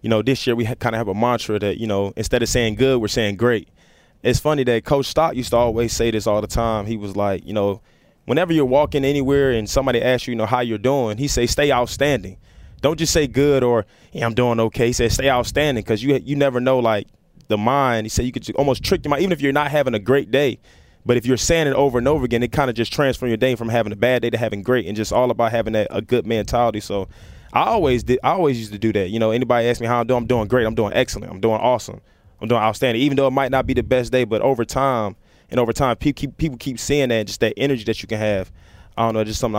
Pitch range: 110-130 Hz